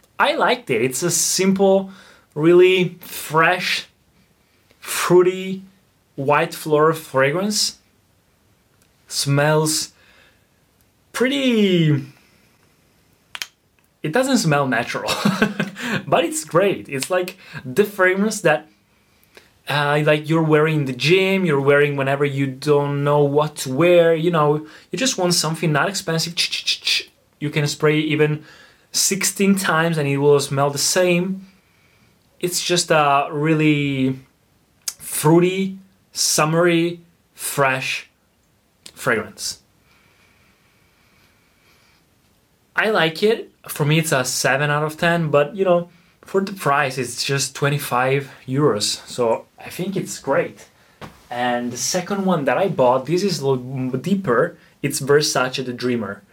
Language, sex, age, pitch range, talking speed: Italian, male, 20-39, 140-185 Hz, 120 wpm